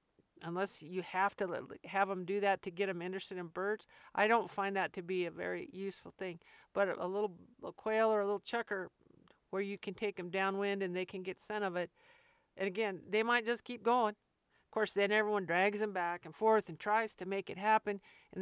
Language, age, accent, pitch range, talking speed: English, 50-69, American, 185-215 Hz, 225 wpm